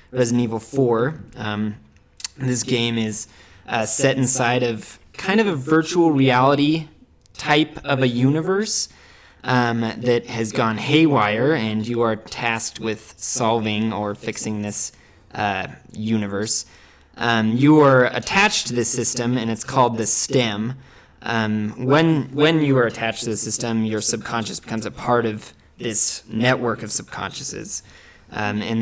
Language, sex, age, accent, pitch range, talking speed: English, male, 20-39, American, 105-125 Hz, 145 wpm